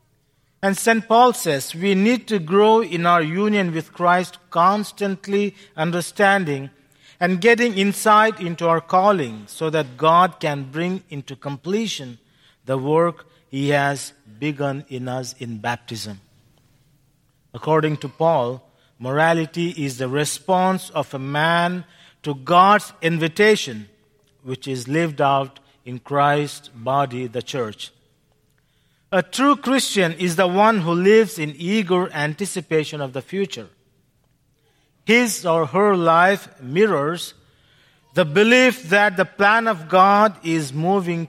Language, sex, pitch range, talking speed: English, male, 140-190 Hz, 125 wpm